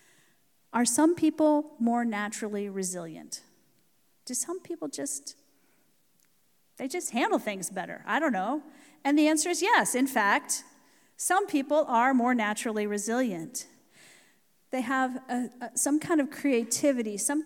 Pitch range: 210-260 Hz